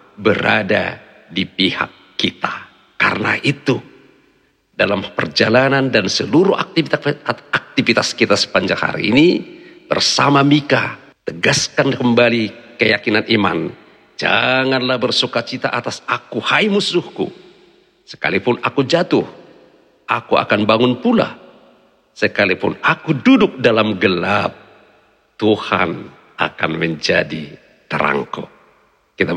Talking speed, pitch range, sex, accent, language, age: 90 wpm, 105-135 Hz, male, native, Indonesian, 50-69